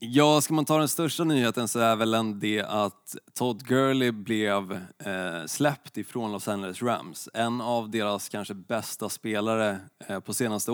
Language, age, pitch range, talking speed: Swedish, 20-39, 100-120 Hz, 155 wpm